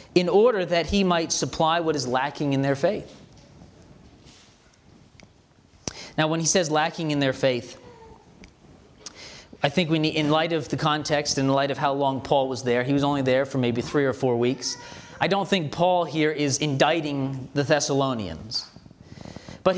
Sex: male